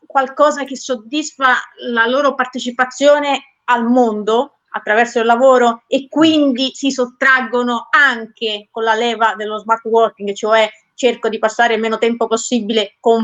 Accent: native